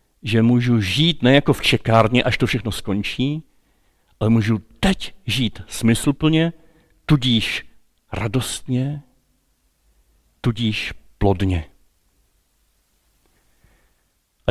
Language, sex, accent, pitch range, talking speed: Czech, male, native, 105-140 Hz, 85 wpm